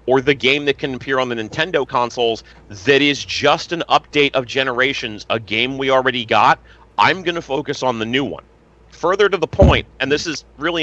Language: English